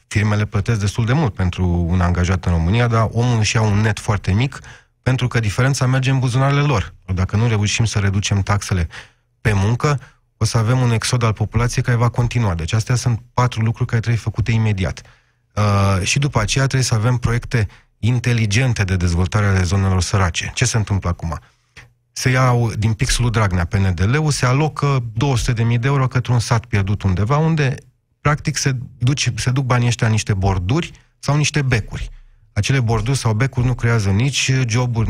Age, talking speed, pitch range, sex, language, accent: 30-49, 185 wpm, 105-125 Hz, male, Romanian, native